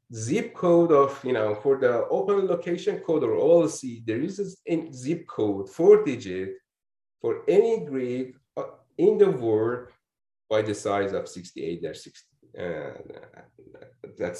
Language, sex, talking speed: English, male, 135 wpm